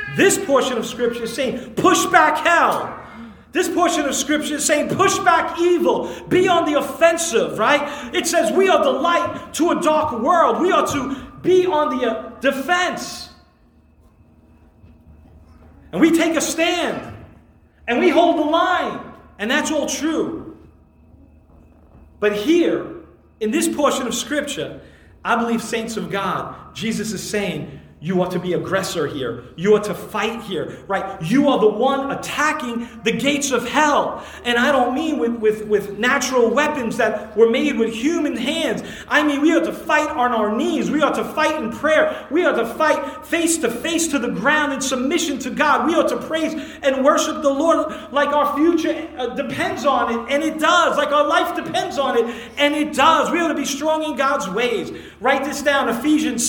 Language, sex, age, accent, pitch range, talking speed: English, male, 40-59, American, 235-315 Hz, 185 wpm